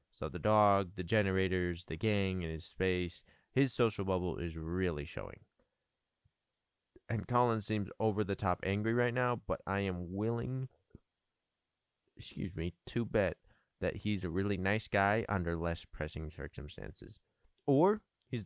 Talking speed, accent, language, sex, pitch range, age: 140 wpm, American, English, male, 85-105 Hz, 30-49